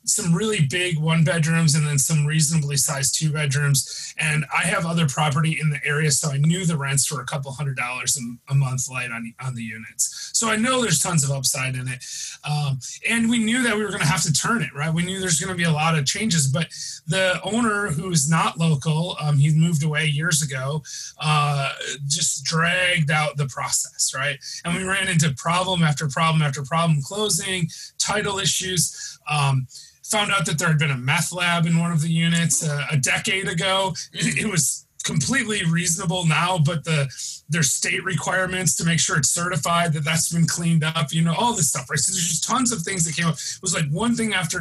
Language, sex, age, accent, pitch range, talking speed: English, male, 30-49, American, 145-175 Hz, 220 wpm